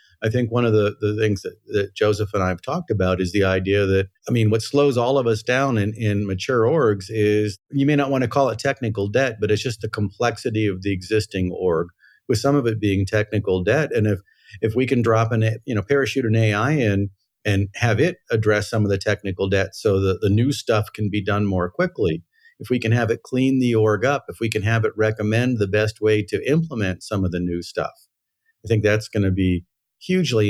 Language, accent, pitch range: English, American, 95-115 Hz